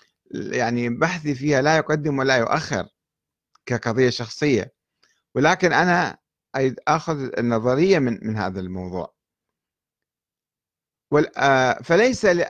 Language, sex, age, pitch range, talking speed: Arabic, male, 50-69, 115-160 Hz, 85 wpm